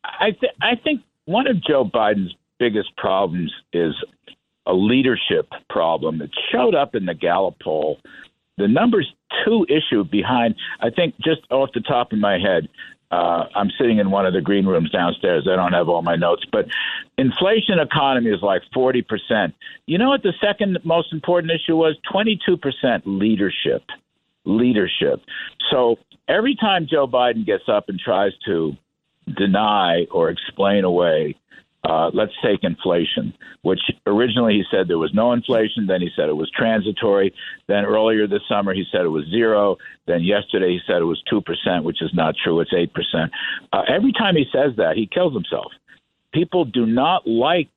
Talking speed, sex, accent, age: 170 wpm, male, American, 60-79